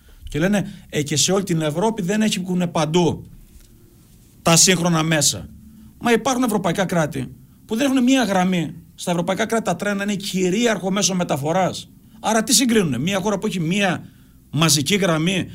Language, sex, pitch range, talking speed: Greek, male, 145-190 Hz, 160 wpm